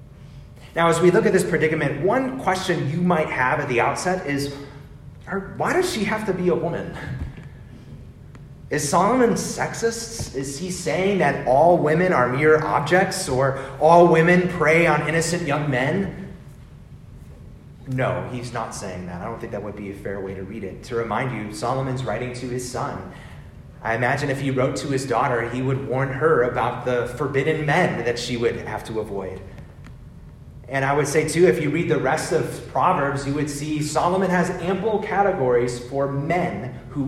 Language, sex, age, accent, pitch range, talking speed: English, male, 30-49, American, 125-160 Hz, 185 wpm